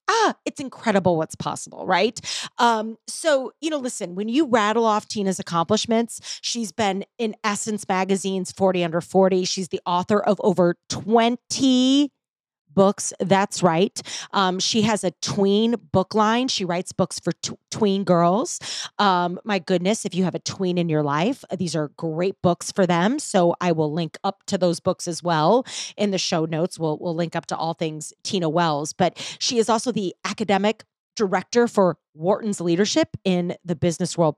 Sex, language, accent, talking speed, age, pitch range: female, English, American, 180 wpm, 30-49, 180-240 Hz